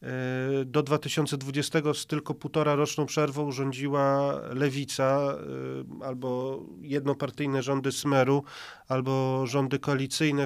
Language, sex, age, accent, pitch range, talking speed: Polish, male, 40-59, native, 135-150 Hz, 90 wpm